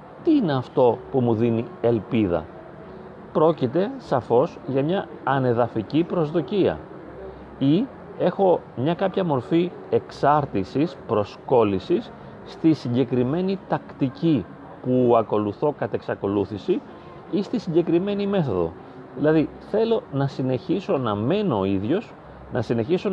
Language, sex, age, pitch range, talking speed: Greek, male, 30-49, 115-180 Hz, 105 wpm